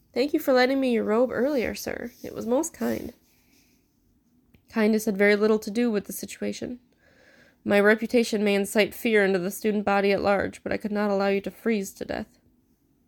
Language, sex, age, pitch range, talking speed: English, female, 20-39, 195-235 Hz, 195 wpm